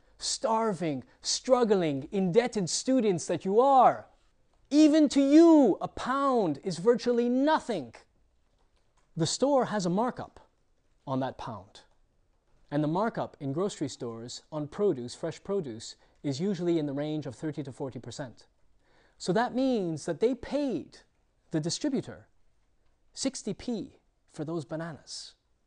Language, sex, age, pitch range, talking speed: English, male, 30-49, 140-225 Hz, 130 wpm